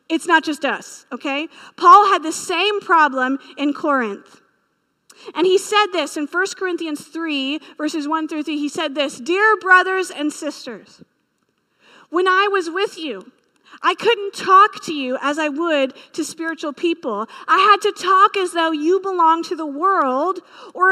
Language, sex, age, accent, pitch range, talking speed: English, female, 40-59, American, 290-375 Hz, 170 wpm